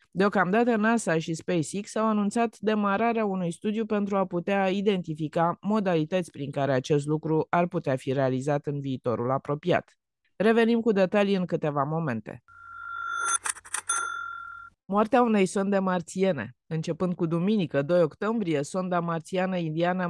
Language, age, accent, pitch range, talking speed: Romanian, 20-39, native, 155-215 Hz, 130 wpm